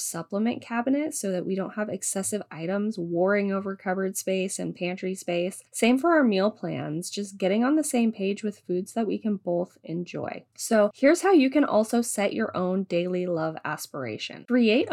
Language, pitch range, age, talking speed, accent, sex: English, 185-230 Hz, 20-39, 190 wpm, American, female